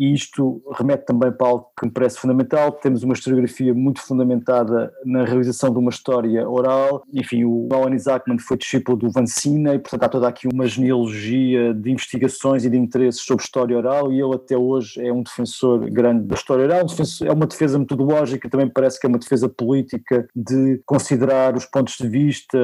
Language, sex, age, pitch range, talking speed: Portuguese, male, 20-39, 125-135 Hz, 195 wpm